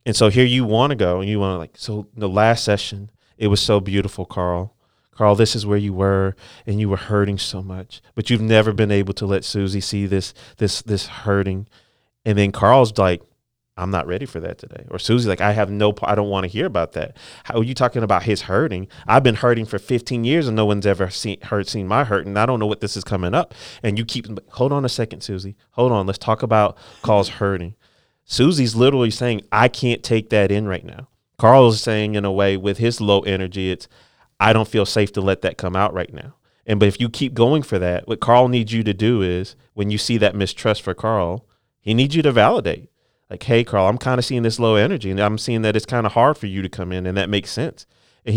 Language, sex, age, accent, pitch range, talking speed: English, male, 30-49, American, 100-115 Hz, 250 wpm